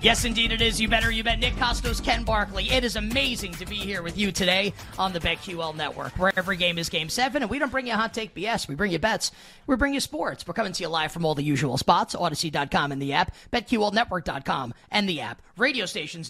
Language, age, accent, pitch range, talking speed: English, 30-49, American, 165-225 Hz, 245 wpm